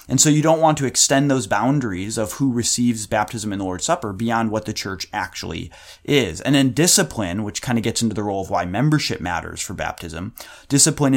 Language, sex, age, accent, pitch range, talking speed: English, male, 30-49, American, 100-135 Hz, 215 wpm